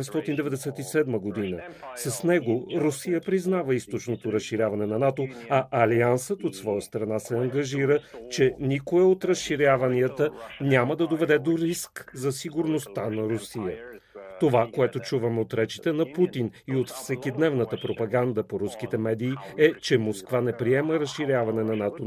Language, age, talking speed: Bulgarian, 40-59, 140 wpm